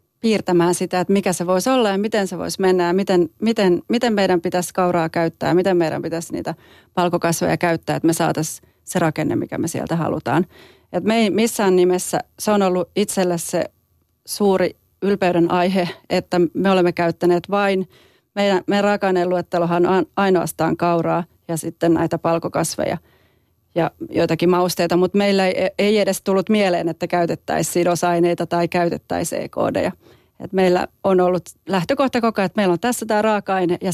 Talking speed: 165 wpm